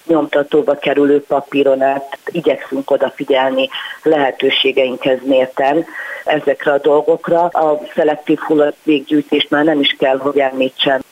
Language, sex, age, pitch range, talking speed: Hungarian, female, 40-59, 135-155 Hz, 110 wpm